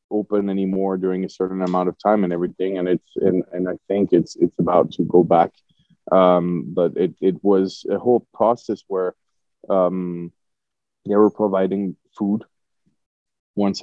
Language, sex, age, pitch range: English, male, 20-39, 90-100 Hz